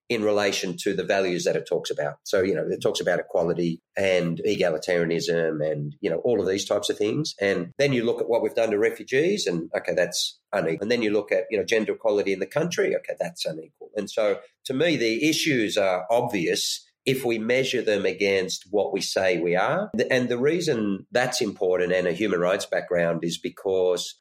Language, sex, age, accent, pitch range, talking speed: English, male, 30-49, Australian, 95-145 Hz, 215 wpm